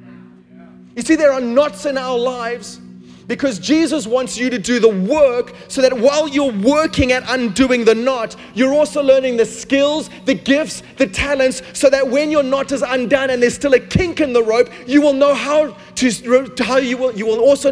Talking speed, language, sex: 205 wpm, English, male